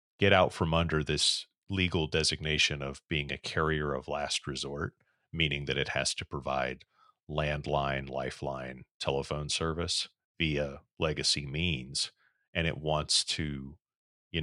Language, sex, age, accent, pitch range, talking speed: English, male, 30-49, American, 70-80 Hz, 135 wpm